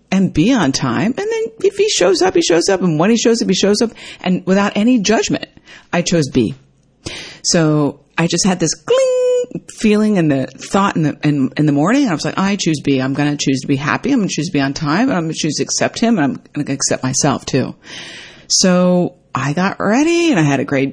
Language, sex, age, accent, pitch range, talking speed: English, female, 50-69, American, 150-235 Hz, 260 wpm